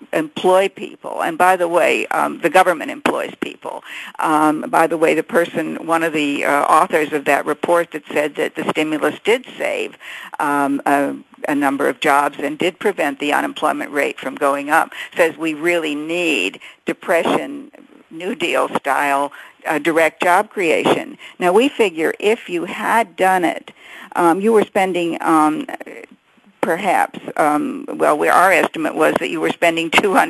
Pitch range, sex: 155-225 Hz, female